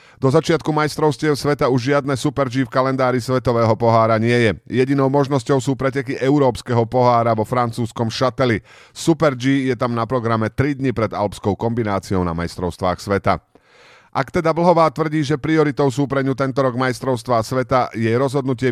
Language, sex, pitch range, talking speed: Slovak, male, 110-140 Hz, 165 wpm